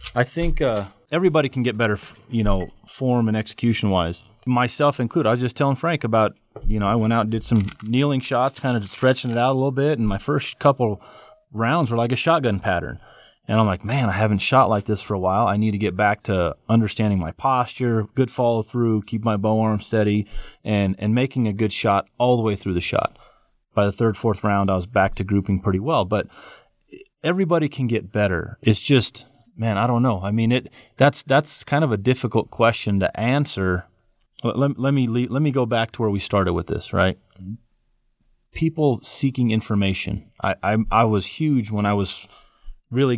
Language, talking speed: English, 210 wpm